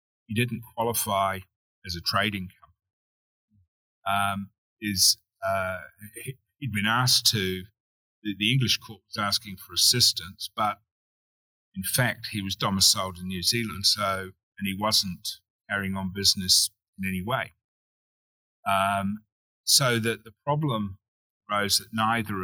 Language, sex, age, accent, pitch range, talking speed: English, male, 30-49, British, 95-110 Hz, 130 wpm